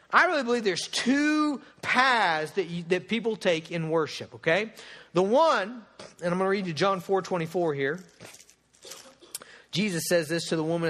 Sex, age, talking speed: male, 50-69, 175 wpm